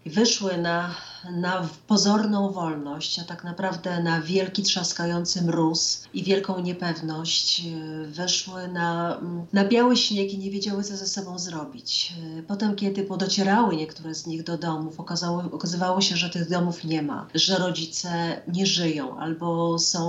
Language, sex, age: Polish, female, 30-49